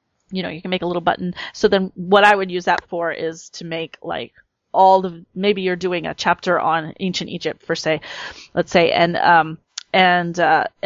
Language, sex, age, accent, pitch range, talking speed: English, female, 30-49, American, 165-195 Hz, 210 wpm